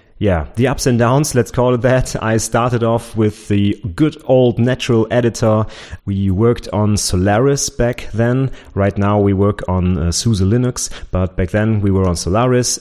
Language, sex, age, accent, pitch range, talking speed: English, male, 30-49, German, 100-115 Hz, 185 wpm